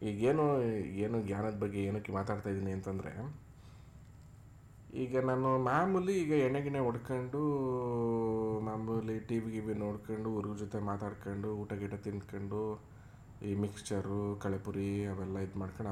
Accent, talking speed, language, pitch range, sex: native, 115 wpm, Kannada, 105-130 Hz, male